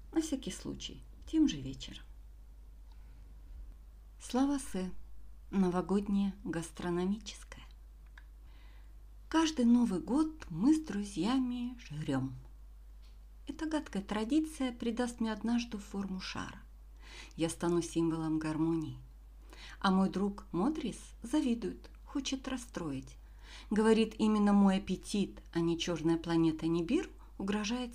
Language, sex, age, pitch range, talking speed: Russian, female, 50-69, 165-240 Hz, 100 wpm